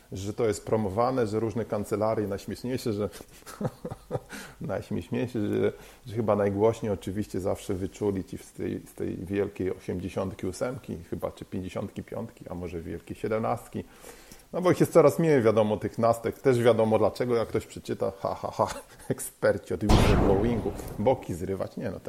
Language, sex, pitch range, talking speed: Polish, male, 95-115 Hz, 160 wpm